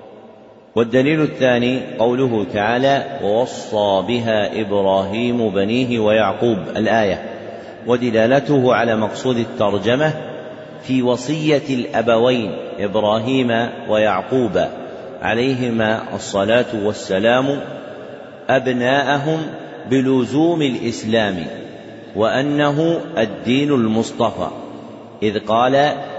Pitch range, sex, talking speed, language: 110-135 Hz, male, 70 wpm, Arabic